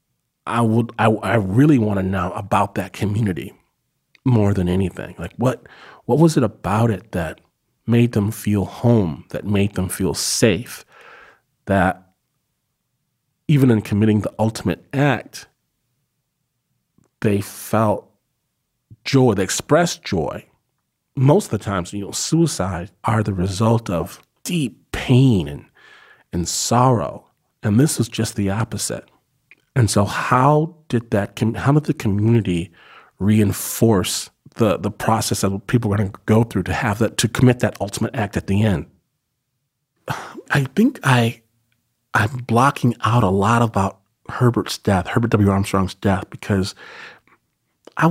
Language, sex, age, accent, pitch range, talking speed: English, male, 40-59, American, 100-125 Hz, 140 wpm